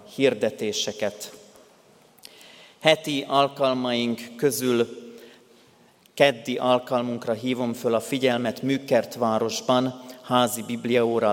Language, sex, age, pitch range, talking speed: Hungarian, male, 30-49, 115-130 Hz, 70 wpm